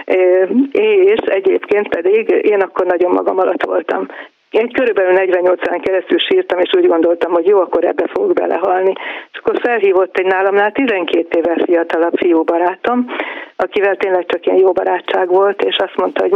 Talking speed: 160 wpm